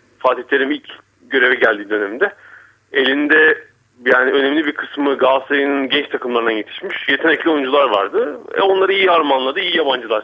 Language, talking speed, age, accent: Turkish, 140 wpm, 40-59, native